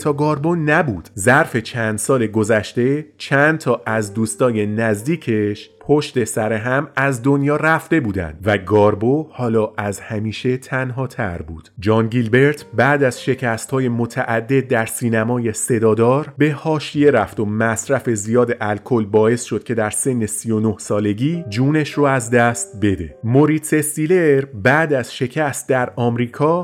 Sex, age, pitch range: male, 30-49, 115-145 Hz